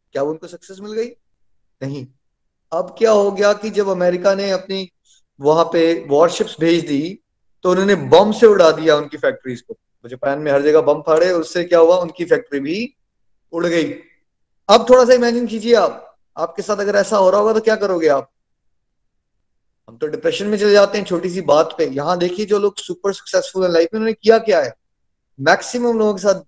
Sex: male